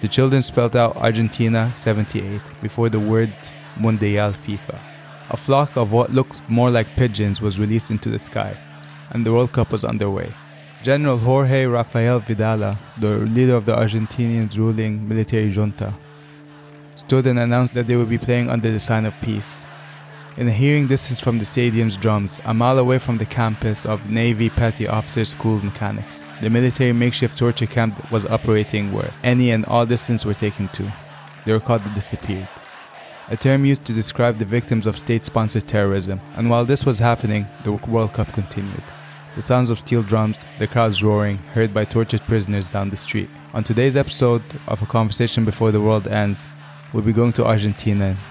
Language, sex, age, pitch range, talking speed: English, male, 20-39, 110-125 Hz, 180 wpm